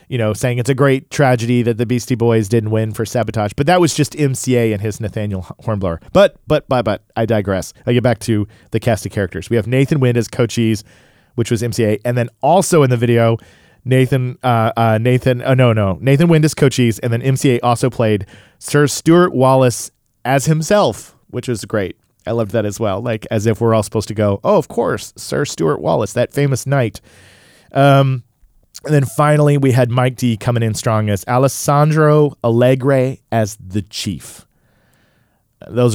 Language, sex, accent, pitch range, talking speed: English, male, American, 105-130 Hz, 195 wpm